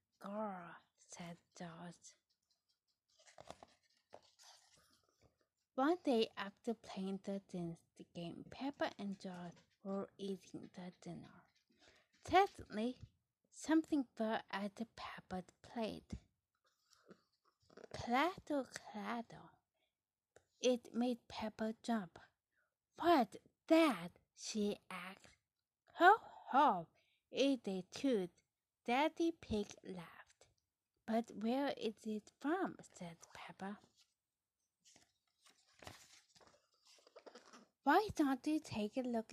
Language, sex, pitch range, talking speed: English, female, 190-270 Hz, 85 wpm